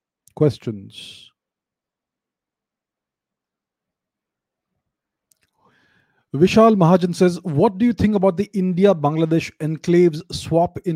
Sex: male